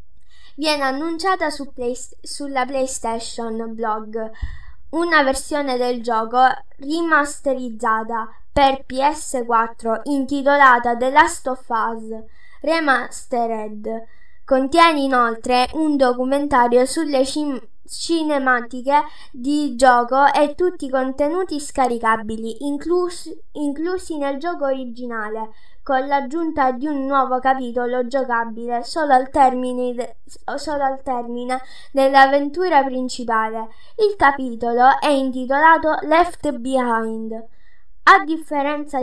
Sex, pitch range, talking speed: female, 245-295 Hz, 90 wpm